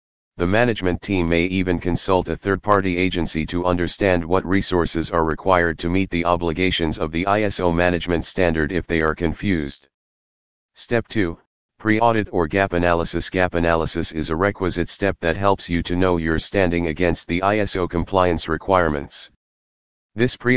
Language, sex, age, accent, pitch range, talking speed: English, male, 40-59, American, 80-95 Hz, 165 wpm